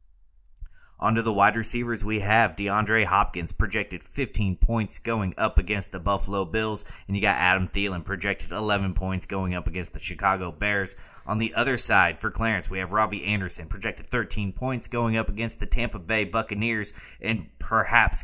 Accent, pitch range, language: American, 90-110 Hz, English